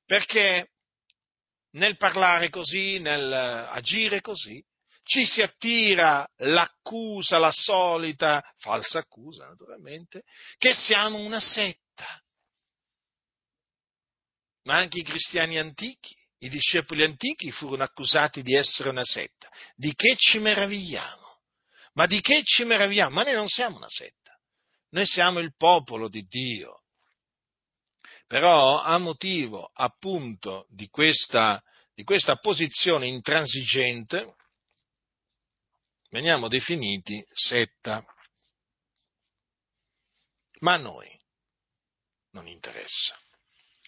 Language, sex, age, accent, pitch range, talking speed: Italian, male, 50-69, native, 145-205 Hz, 100 wpm